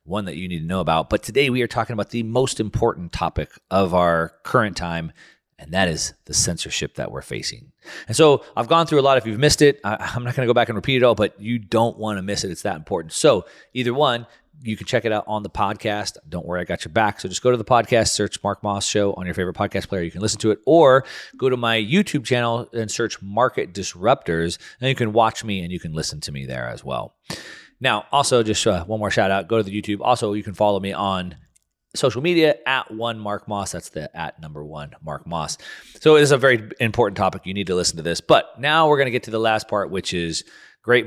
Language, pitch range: English, 90-120 Hz